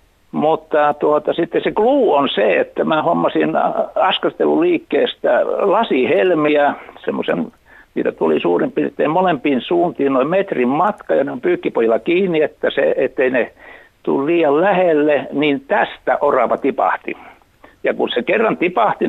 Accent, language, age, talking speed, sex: native, Finnish, 60-79, 135 wpm, male